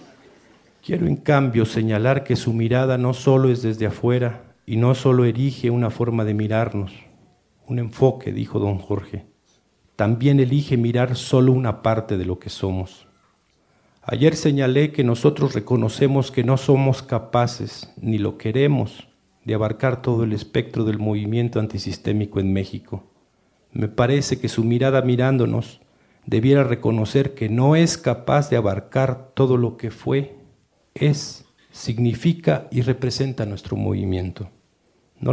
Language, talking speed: Spanish, 140 wpm